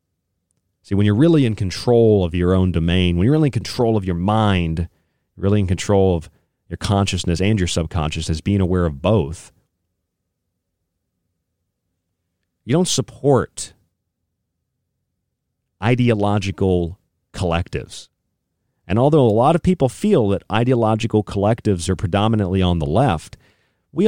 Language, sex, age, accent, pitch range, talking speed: English, male, 40-59, American, 90-120 Hz, 130 wpm